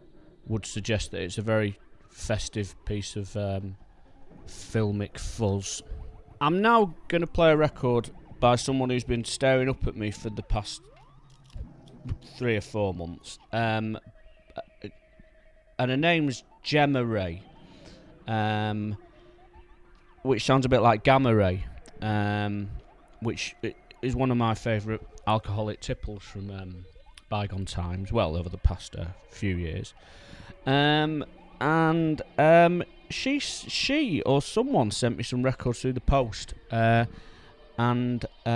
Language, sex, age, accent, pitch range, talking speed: English, male, 30-49, British, 105-135 Hz, 130 wpm